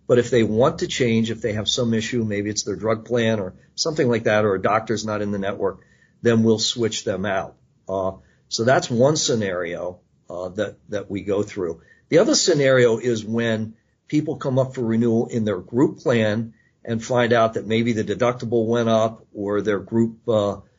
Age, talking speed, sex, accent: 50-69, 200 wpm, male, American